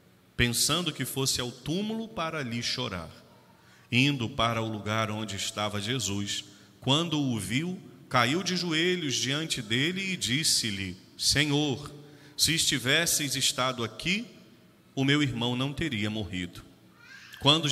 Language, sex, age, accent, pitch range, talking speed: Portuguese, male, 40-59, Brazilian, 110-145 Hz, 125 wpm